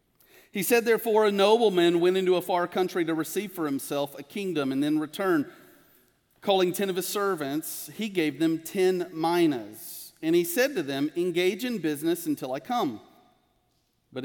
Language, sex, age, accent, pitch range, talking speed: English, male, 40-59, American, 155-220 Hz, 175 wpm